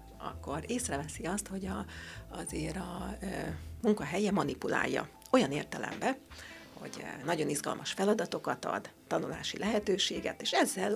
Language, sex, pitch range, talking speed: Hungarian, female, 145-220 Hz, 115 wpm